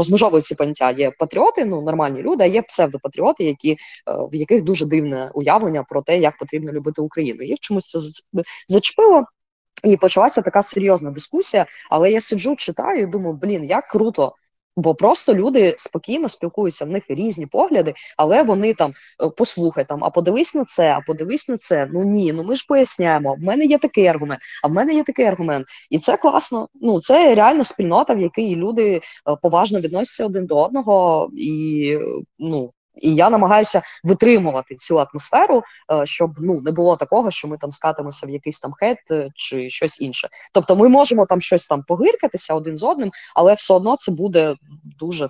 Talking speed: 175 wpm